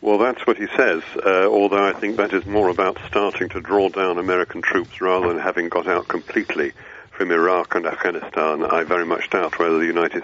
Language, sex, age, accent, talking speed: English, male, 50-69, British, 210 wpm